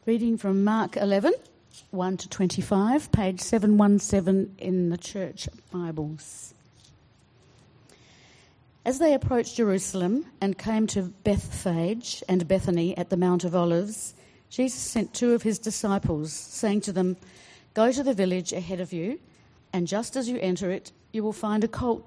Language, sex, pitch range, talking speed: English, female, 170-210 Hz, 150 wpm